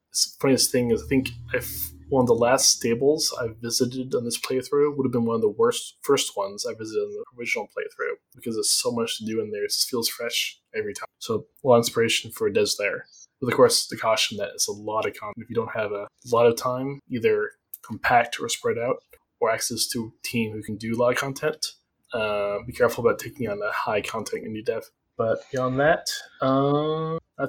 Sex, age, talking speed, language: male, 20-39, 235 wpm, English